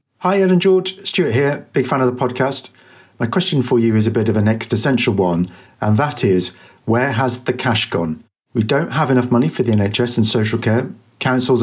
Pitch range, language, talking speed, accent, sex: 105-130 Hz, English, 210 wpm, British, male